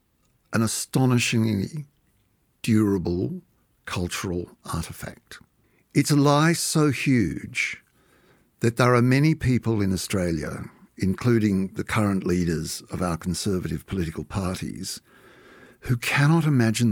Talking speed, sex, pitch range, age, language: 105 wpm, male, 100-140 Hz, 60-79, English